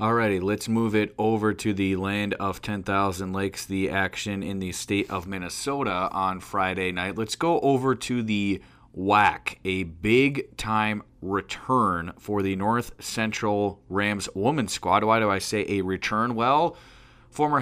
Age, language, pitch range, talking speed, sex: 30-49, English, 100-115 Hz, 155 wpm, male